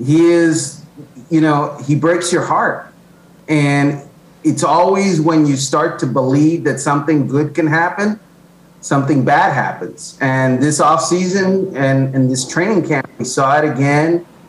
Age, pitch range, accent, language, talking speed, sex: 40-59, 150-185 Hz, American, English, 150 wpm, male